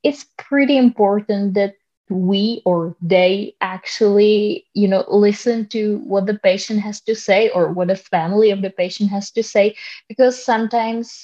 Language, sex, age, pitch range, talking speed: English, female, 20-39, 190-225 Hz, 160 wpm